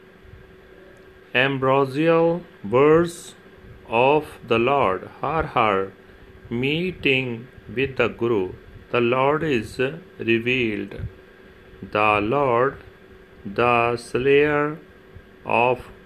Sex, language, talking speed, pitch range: male, Punjabi, 75 wpm, 105-145 Hz